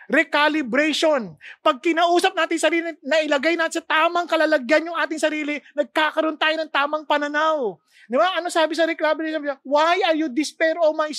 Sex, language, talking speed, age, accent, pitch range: male, English, 165 wpm, 20-39, Filipino, 305-345 Hz